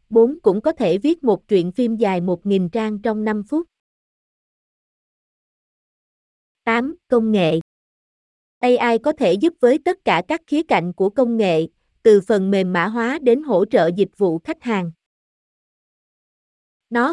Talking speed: 150 wpm